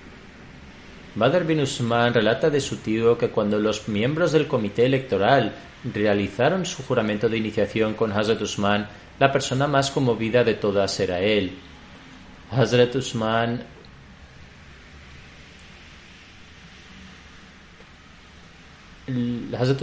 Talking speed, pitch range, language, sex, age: 95 wpm, 105-125 Hz, Spanish, male, 30-49